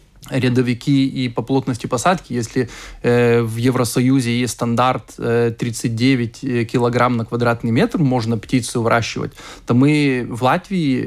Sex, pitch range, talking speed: male, 120-140 Hz, 130 wpm